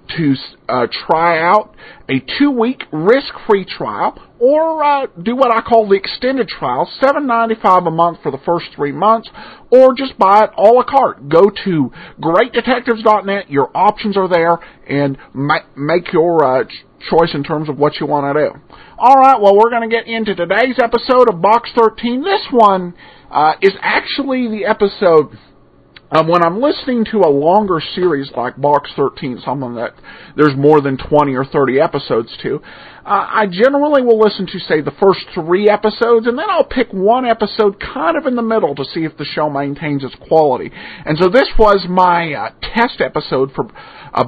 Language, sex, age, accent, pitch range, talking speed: English, male, 50-69, American, 155-235 Hz, 185 wpm